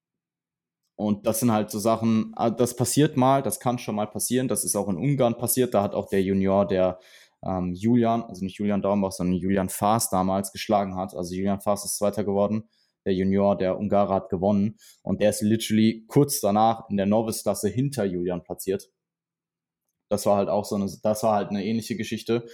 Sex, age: male, 20-39